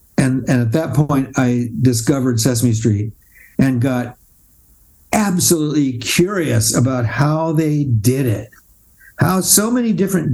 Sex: male